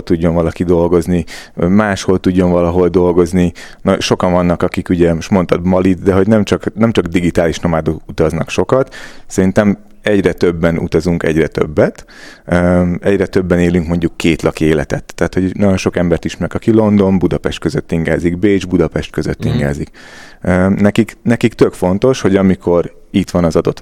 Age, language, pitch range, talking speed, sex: 30-49, Hungarian, 85-100 Hz, 160 wpm, male